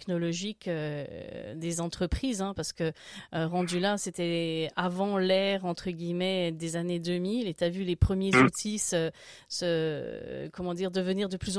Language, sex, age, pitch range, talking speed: French, female, 30-49, 175-200 Hz, 160 wpm